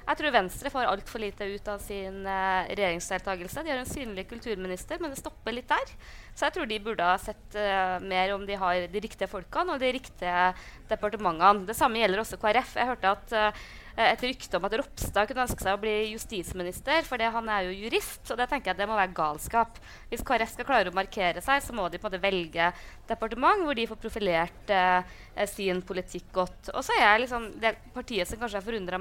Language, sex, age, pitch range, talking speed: English, female, 20-39, 195-255 Hz, 220 wpm